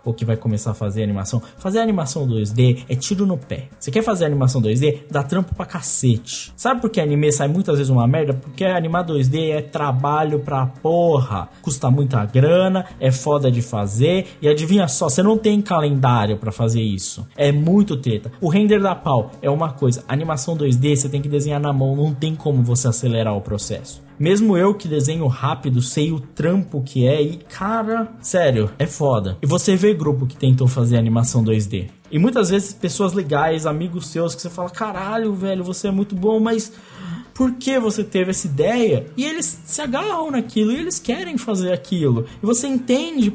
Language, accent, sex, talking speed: Portuguese, Brazilian, male, 195 wpm